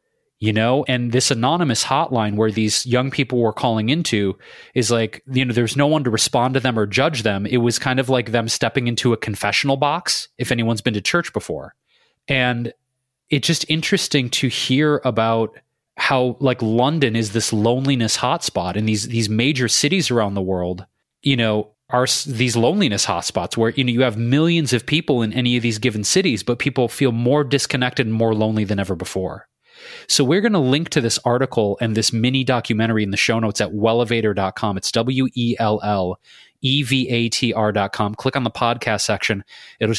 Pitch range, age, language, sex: 110-130 Hz, 30-49, English, male